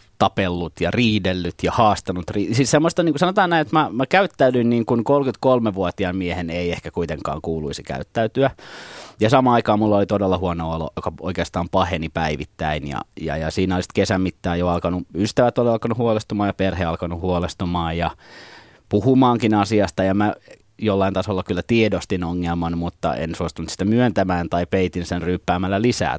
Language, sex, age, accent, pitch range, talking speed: Finnish, male, 30-49, native, 85-110 Hz, 165 wpm